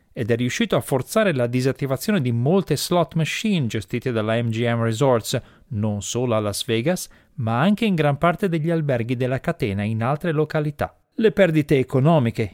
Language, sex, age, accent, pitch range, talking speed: Italian, male, 40-59, native, 115-170 Hz, 165 wpm